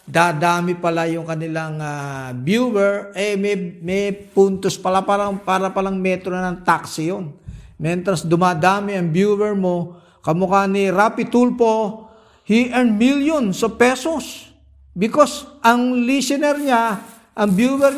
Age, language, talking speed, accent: 50-69, Filipino, 135 wpm, native